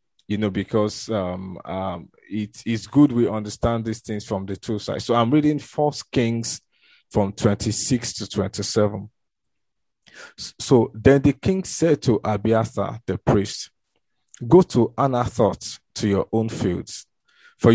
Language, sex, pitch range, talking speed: English, male, 105-125 Hz, 140 wpm